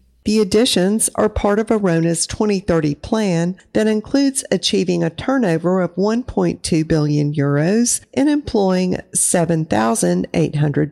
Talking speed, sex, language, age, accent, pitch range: 110 wpm, female, English, 50-69, American, 160-205 Hz